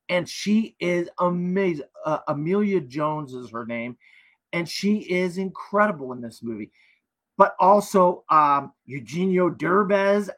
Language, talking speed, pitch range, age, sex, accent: English, 125 wpm, 160-205 Hz, 40-59, male, American